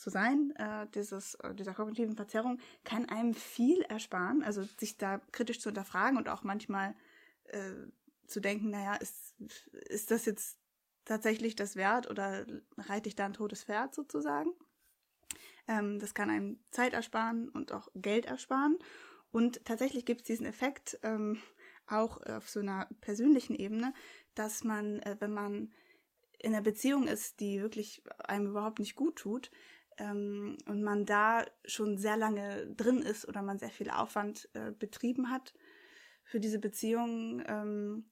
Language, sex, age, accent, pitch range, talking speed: German, female, 20-39, German, 205-250 Hz, 155 wpm